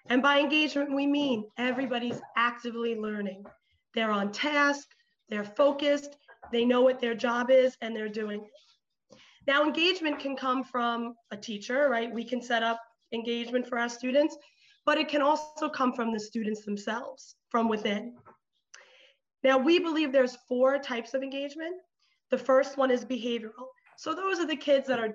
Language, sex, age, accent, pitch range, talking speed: English, female, 30-49, American, 235-280 Hz, 165 wpm